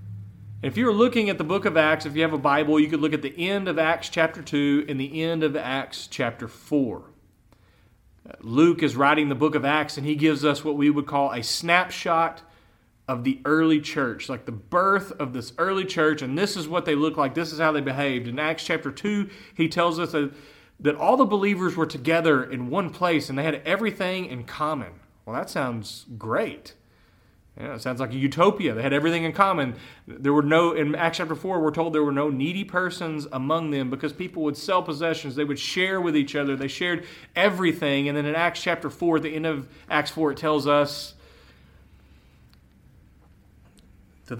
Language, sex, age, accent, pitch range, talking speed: English, male, 40-59, American, 125-165 Hz, 205 wpm